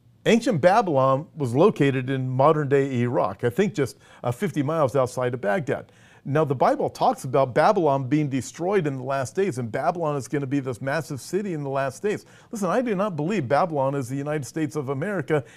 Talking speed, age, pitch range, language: 205 wpm, 50-69, 135-165 Hz, English